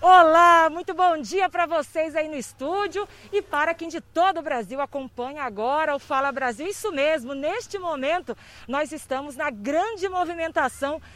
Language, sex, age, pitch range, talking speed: Portuguese, female, 40-59, 260-330 Hz, 160 wpm